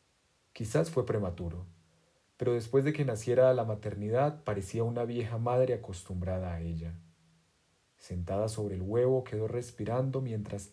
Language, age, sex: Spanish, 40-59, male